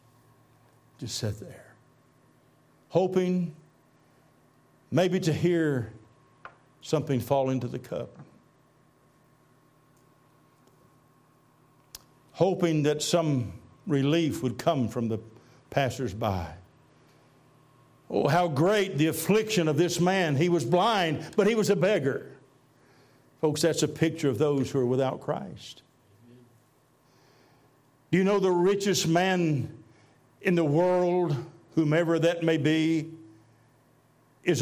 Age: 60-79